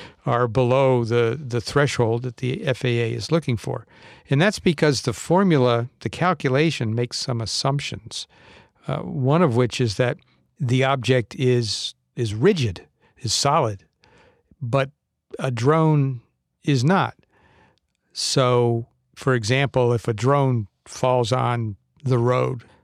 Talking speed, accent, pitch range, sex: 130 wpm, American, 120-140 Hz, male